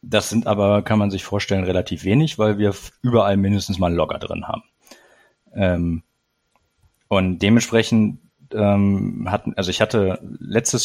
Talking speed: 125 wpm